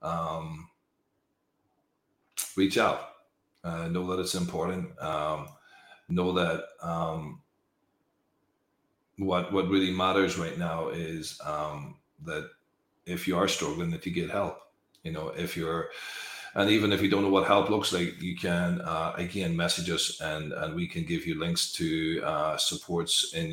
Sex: male